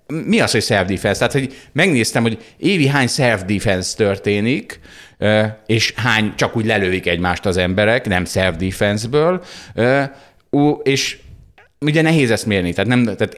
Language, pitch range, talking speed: Hungarian, 95-130 Hz, 125 wpm